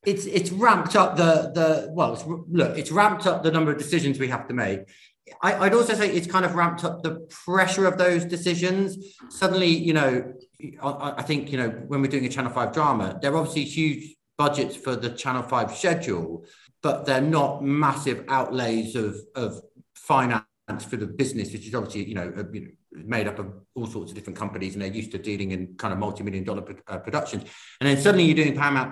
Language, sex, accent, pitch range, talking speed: English, male, British, 115-160 Hz, 210 wpm